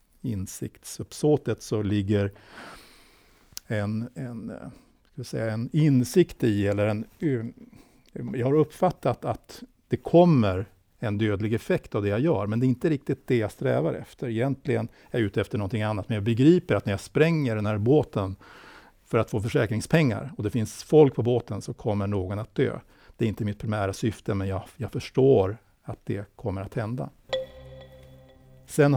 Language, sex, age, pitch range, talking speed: Swedish, male, 60-79, 105-130 Hz, 170 wpm